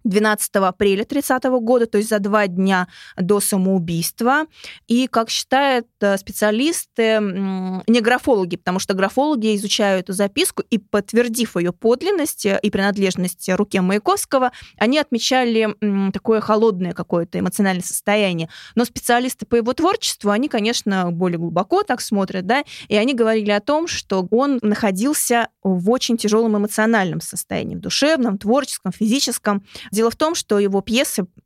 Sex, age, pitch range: female, 20-39, 195-240 Hz